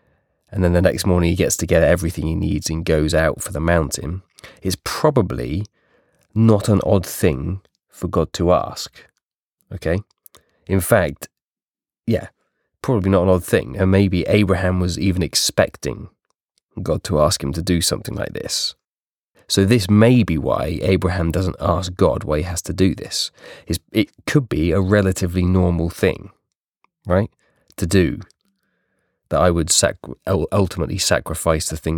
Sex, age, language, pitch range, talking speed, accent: male, 20-39, English, 85-95 Hz, 160 wpm, British